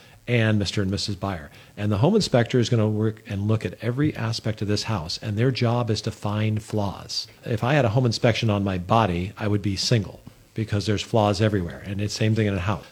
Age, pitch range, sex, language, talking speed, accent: 50-69, 105-125 Hz, male, English, 235 wpm, American